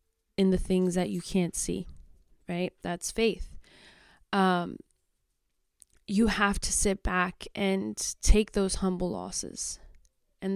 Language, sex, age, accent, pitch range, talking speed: English, female, 20-39, American, 185-210 Hz, 125 wpm